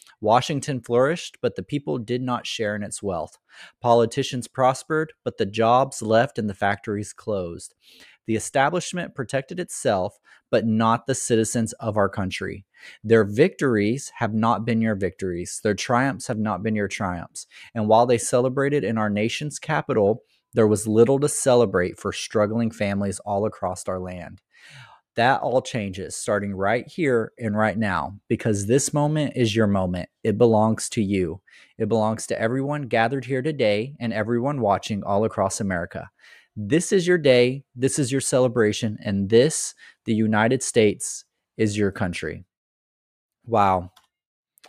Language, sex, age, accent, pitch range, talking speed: English, male, 30-49, American, 105-125 Hz, 155 wpm